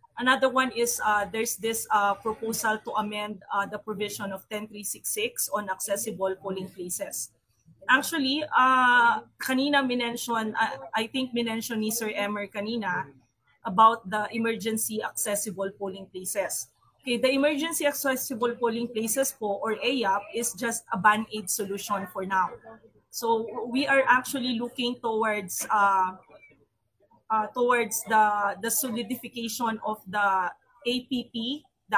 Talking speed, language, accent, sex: 130 wpm, Filipino, native, female